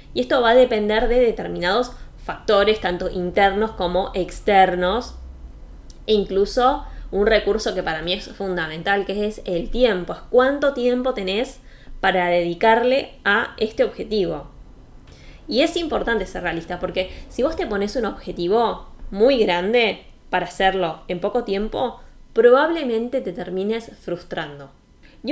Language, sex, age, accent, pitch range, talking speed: Spanish, female, 20-39, Argentinian, 180-250 Hz, 135 wpm